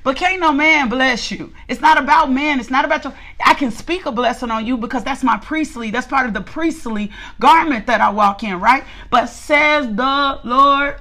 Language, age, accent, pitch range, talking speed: English, 40-59, American, 235-300 Hz, 220 wpm